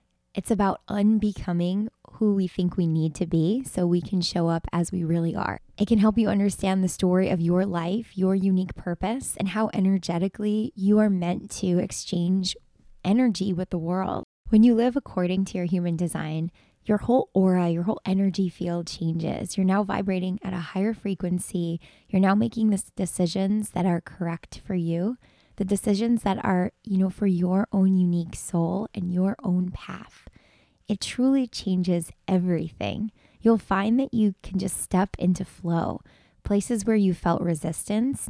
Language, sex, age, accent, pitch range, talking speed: English, female, 10-29, American, 180-210 Hz, 170 wpm